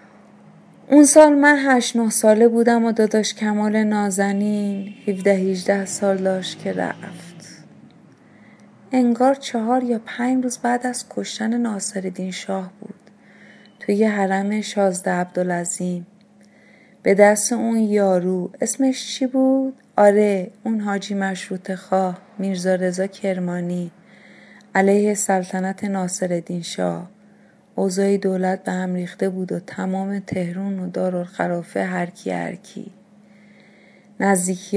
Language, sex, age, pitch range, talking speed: Persian, female, 30-49, 185-210 Hz, 110 wpm